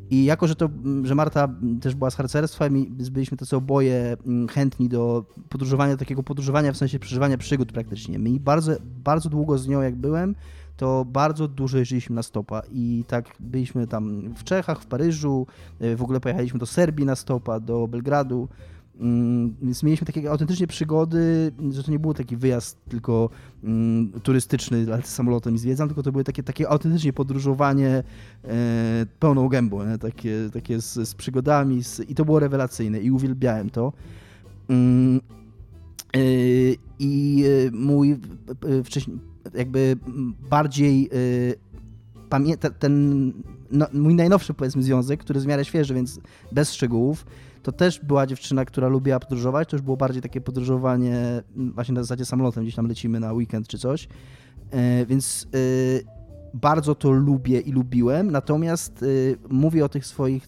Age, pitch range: 20-39, 120-140 Hz